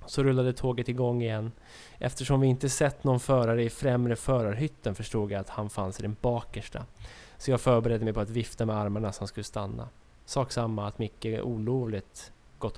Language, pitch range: Swedish, 105-125 Hz